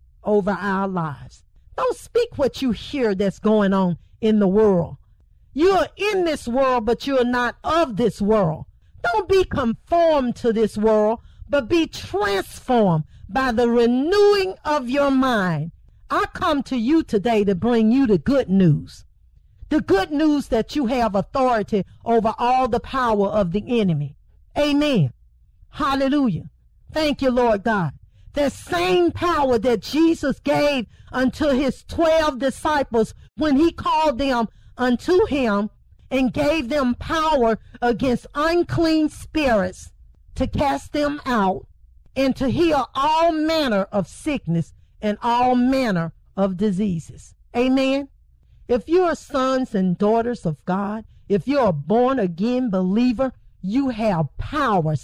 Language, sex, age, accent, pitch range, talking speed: English, female, 50-69, American, 200-290 Hz, 140 wpm